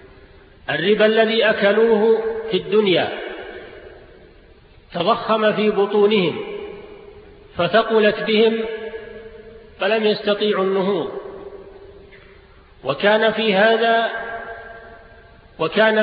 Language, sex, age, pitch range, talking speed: Arabic, male, 50-69, 190-215 Hz, 65 wpm